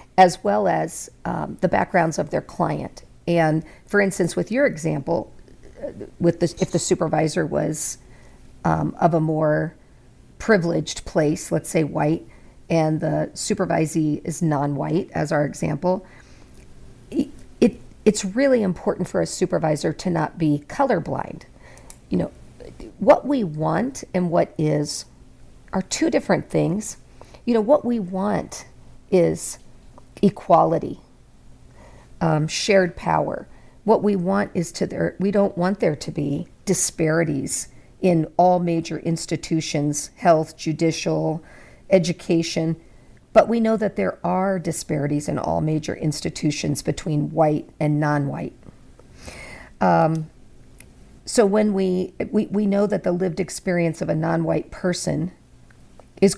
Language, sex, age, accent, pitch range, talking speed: English, female, 50-69, American, 155-195 Hz, 130 wpm